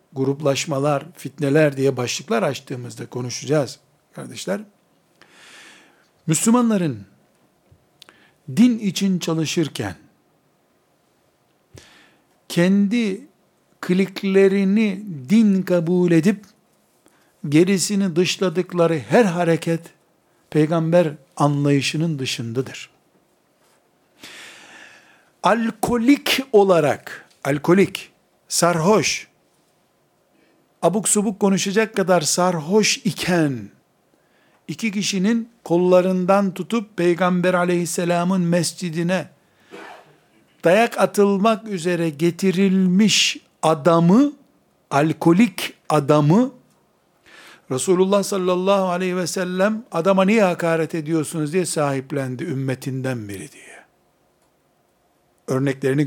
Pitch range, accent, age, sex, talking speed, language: 150-200 Hz, native, 60-79, male, 65 wpm, Turkish